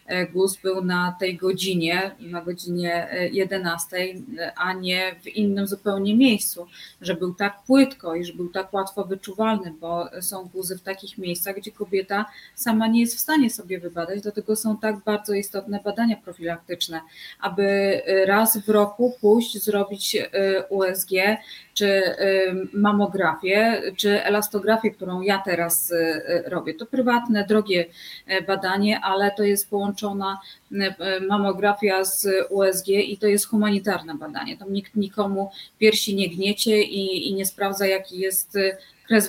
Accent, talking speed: native, 135 wpm